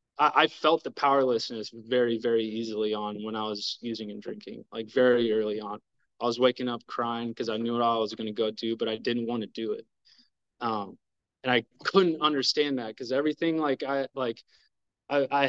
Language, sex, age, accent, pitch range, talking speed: English, male, 20-39, American, 115-140 Hz, 205 wpm